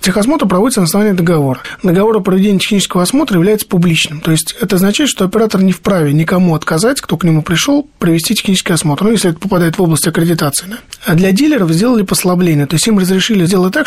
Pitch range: 165-210 Hz